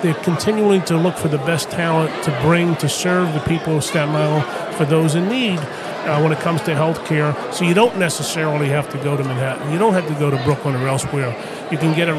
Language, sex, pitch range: English, male, 150-180 Hz